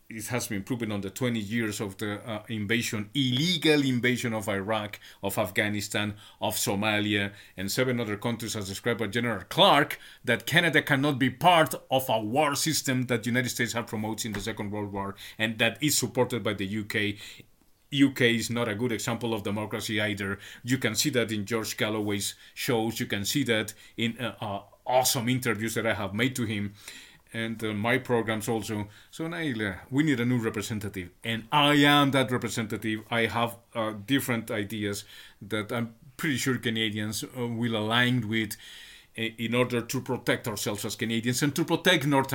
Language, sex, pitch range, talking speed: English, male, 105-125 Hz, 185 wpm